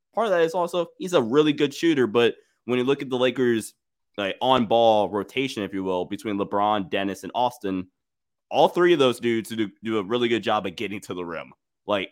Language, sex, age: English, male, 20-39